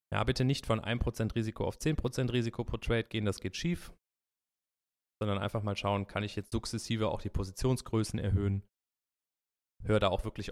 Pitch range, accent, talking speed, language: 100-125 Hz, German, 175 wpm, German